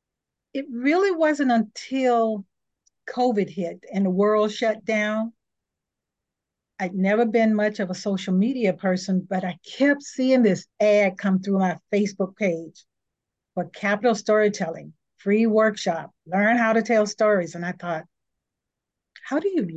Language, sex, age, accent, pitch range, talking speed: English, female, 50-69, American, 185-240 Hz, 145 wpm